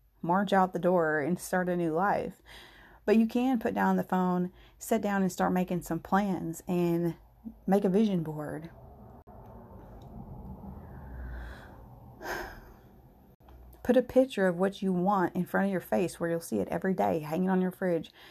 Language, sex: English, female